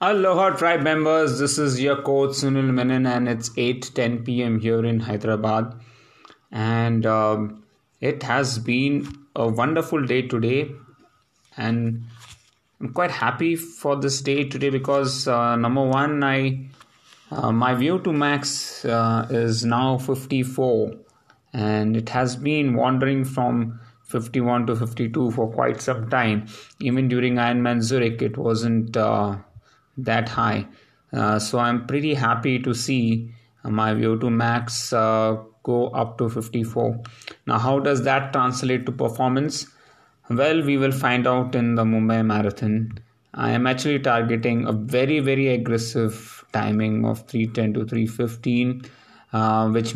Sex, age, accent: male, 30-49, Indian